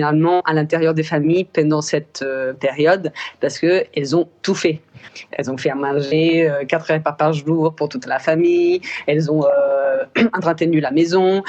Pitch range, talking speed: 150-180 Hz, 170 wpm